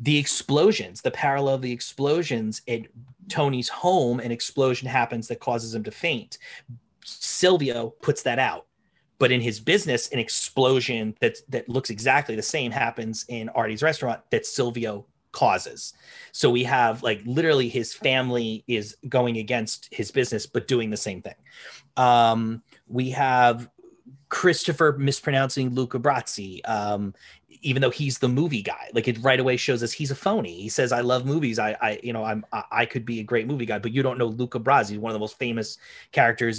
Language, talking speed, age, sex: English, 180 wpm, 30-49, male